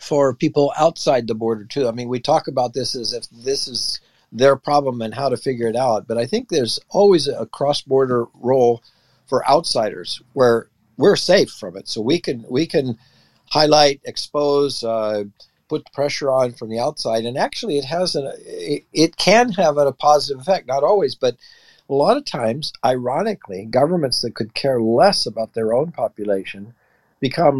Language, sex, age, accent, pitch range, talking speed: English, male, 50-69, American, 115-145 Hz, 180 wpm